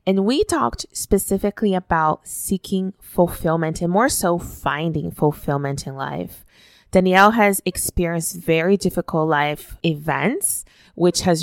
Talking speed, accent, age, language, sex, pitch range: 120 wpm, American, 20-39, English, female, 150-180 Hz